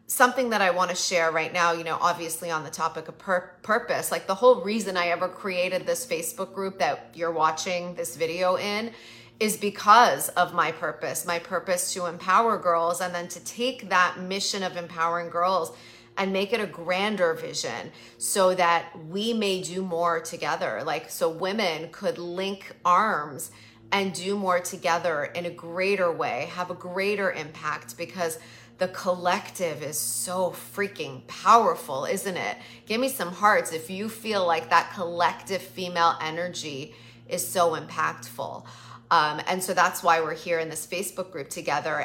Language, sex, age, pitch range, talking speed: English, female, 30-49, 165-195 Hz, 170 wpm